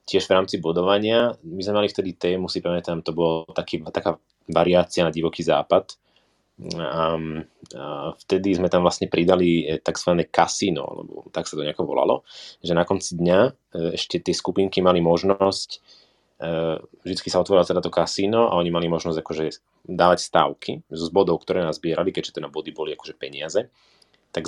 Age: 30-49